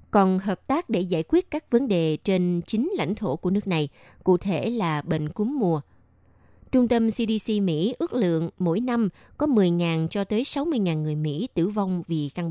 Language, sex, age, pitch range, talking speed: Vietnamese, female, 20-39, 165-225 Hz, 195 wpm